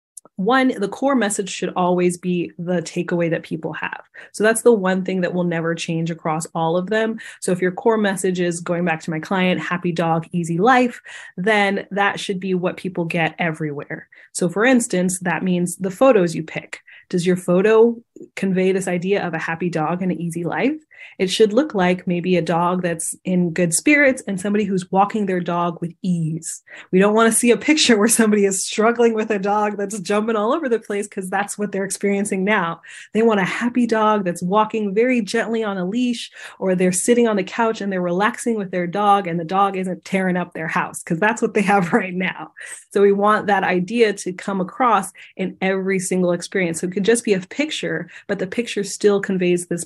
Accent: American